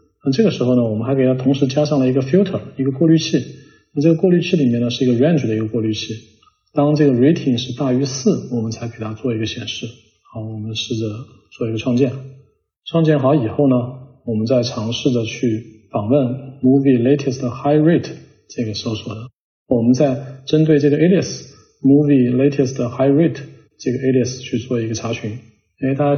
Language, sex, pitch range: Chinese, male, 115-140 Hz